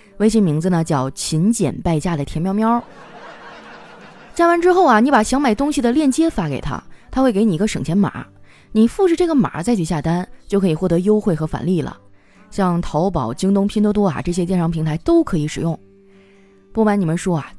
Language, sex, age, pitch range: Chinese, female, 20-39, 170-245 Hz